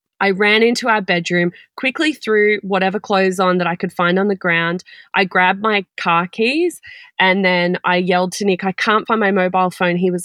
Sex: female